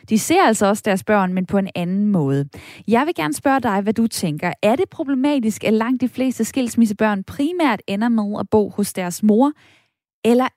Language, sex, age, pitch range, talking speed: Danish, female, 10-29, 200-270 Hz, 205 wpm